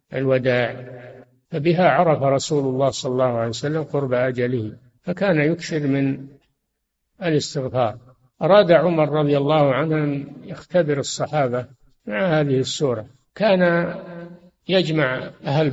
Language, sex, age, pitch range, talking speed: Arabic, male, 60-79, 130-155 Hz, 105 wpm